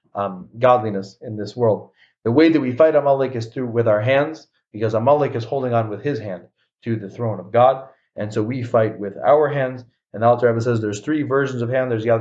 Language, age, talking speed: English, 30-49, 220 wpm